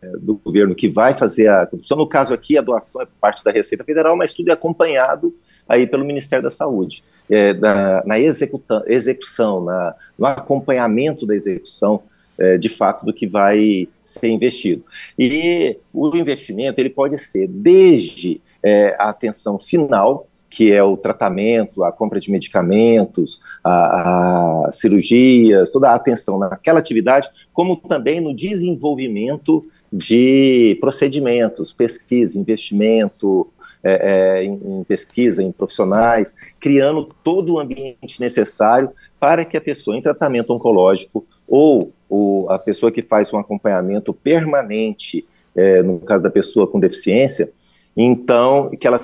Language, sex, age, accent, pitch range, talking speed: Portuguese, male, 50-69, Brazilian, 105-150 Hz, 140 wpm